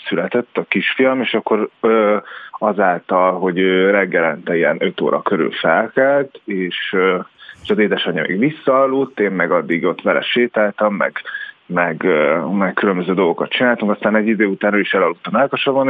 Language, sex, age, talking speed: Hungarian, male, 30-49, 145 wpm